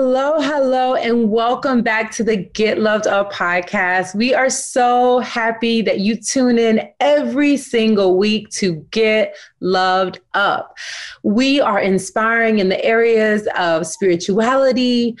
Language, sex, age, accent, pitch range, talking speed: English, female, 30-49, American, 200-255 Hz, 135 wpm